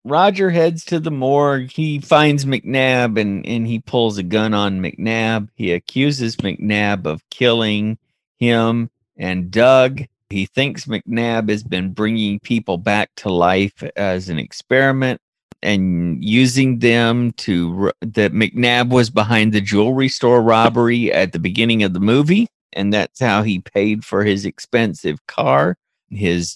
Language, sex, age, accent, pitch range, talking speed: English, male, 40-59, American, 100-130 Hz, 145 wpm